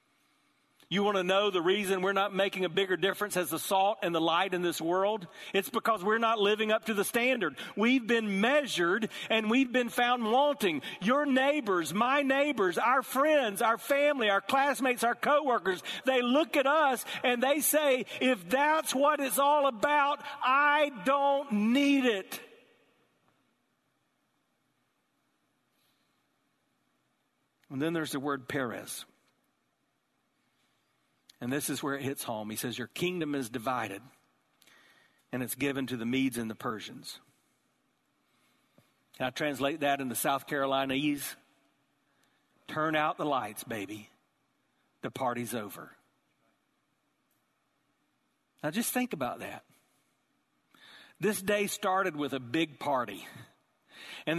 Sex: male